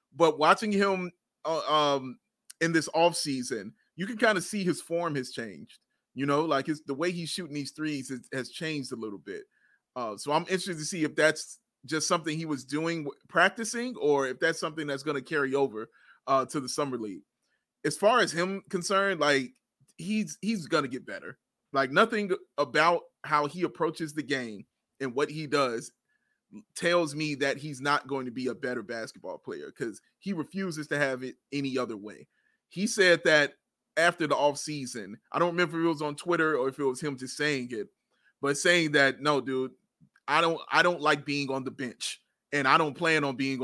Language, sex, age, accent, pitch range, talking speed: English, male, 30-49, American, 140-175 Hz, 200 wpm